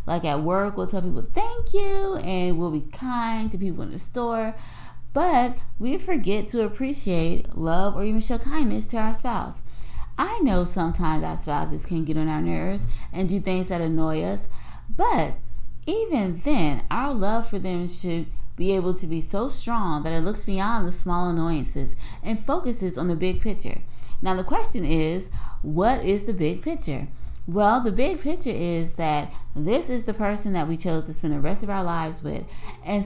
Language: English